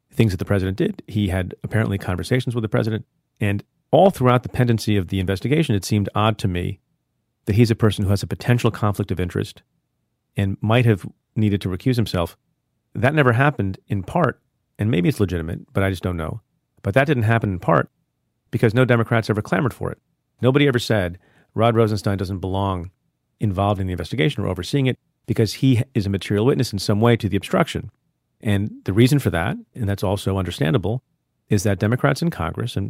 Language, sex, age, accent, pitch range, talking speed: English, male, 40-59, American, 100-125 Hz, 200 wpm